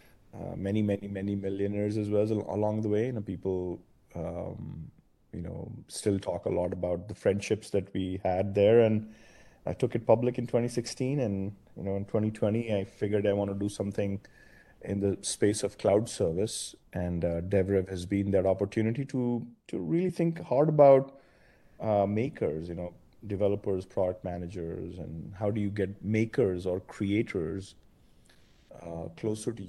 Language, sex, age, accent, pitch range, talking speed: English, male, 30-49, Indian, 95-110 Hz, 170 wpm